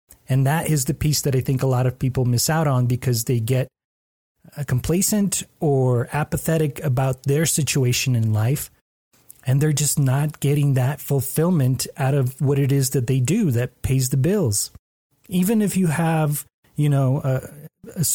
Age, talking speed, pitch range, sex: 30-49, 175 wpm, 120-150 Hz, male